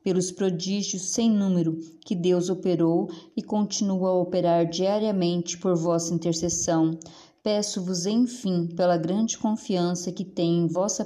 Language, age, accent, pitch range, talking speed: Portuguese, 20-39, Brazilian, 170-195 Hz, 130 wpm